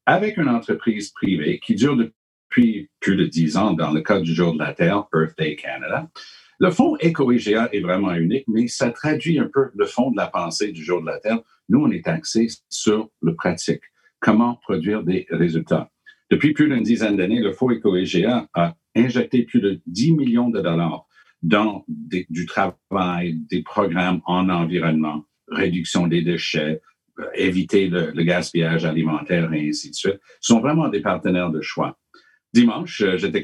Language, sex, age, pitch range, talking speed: French, male, 60-79, 85-115 Hz, 175 wpm